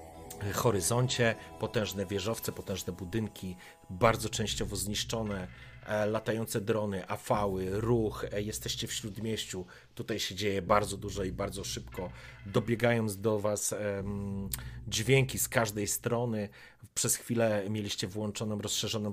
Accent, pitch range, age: native, 100-115 Hz, 30-49